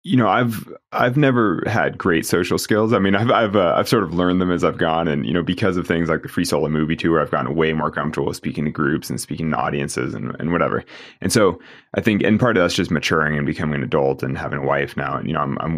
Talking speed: 280 wpm